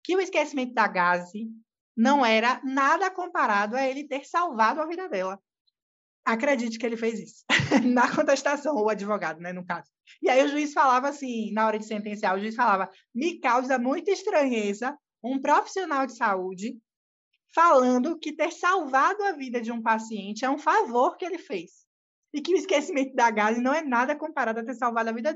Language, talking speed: Portuguese, 185 wpm